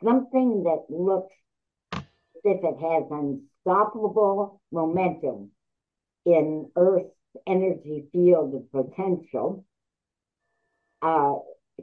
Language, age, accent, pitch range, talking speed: English, 60-79, American, 155-210 Hz, 80 wpm